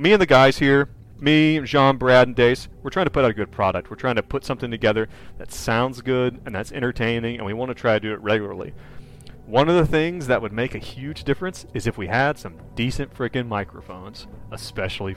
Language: English